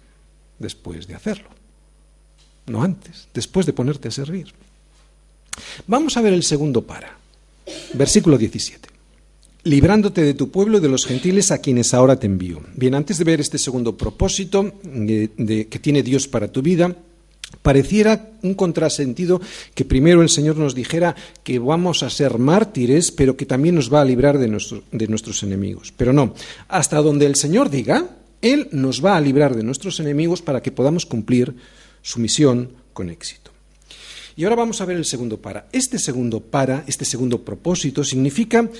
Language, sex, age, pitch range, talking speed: Spanish, male, 50-69, 125-180 Hz, 165 wpm